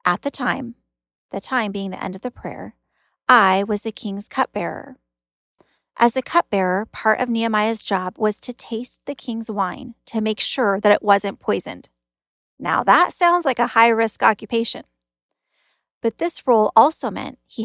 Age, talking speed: 30-49, 165 wpm